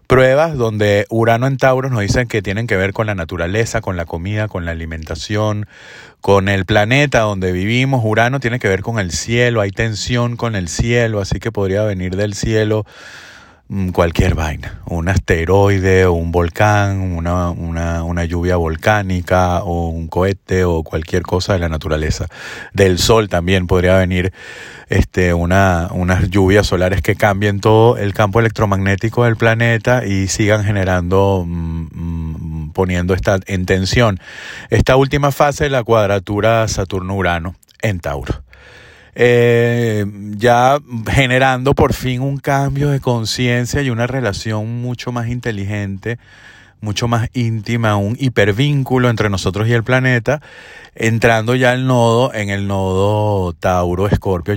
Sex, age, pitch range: male, 30-49, 95-120 Hz